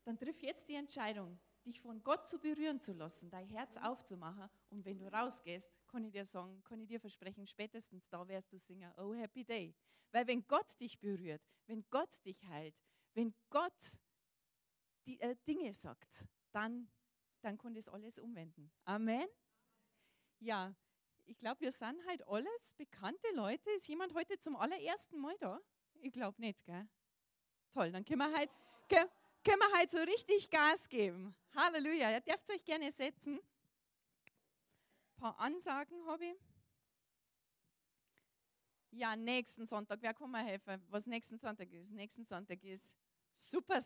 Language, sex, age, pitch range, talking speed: German, female, 40-59, 200-295 Hz, 155 wpm